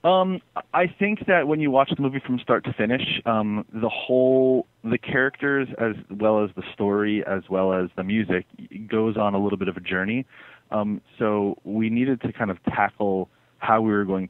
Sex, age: male, 20-39